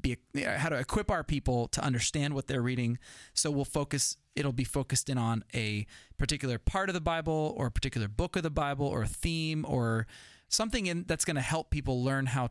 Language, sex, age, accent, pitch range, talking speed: English, male, 20-39, American, 115-145 Hz, 215 wpm